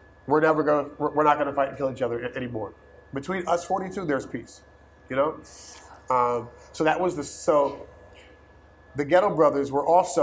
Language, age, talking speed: Finnish, 30-49, 175 wpm